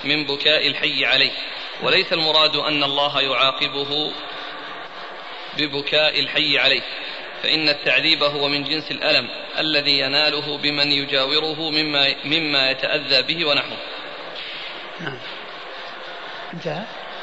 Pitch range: 140-155 Hz